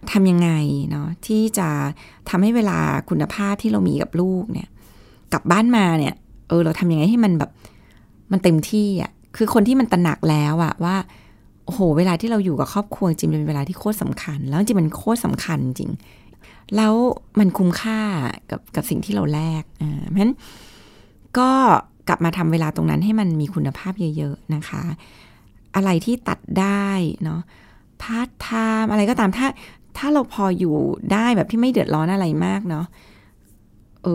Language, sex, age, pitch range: Thai, female, 20-39, 150-200 Hz